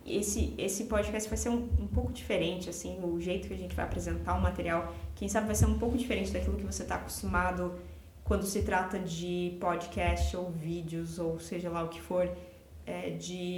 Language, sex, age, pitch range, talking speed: Portuguese, female, 20-39, 165-225 Hz, 200 wpm